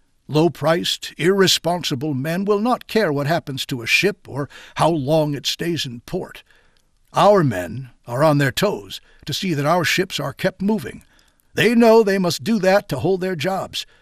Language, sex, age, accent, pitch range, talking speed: English, male, 60-79, American, 145-200 Hz, 180 wpm